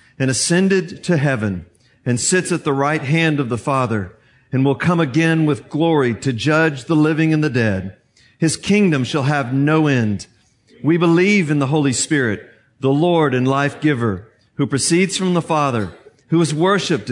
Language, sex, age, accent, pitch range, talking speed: English, male, 50-69, American, 120-155 Hz, 180 wpm